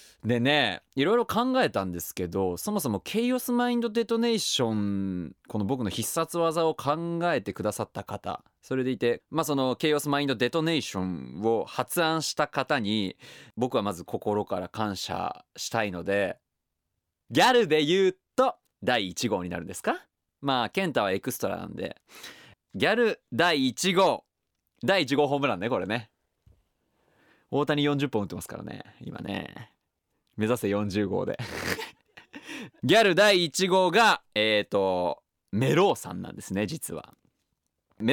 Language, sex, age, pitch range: Japanese, male, 20-39, 105-165 Hz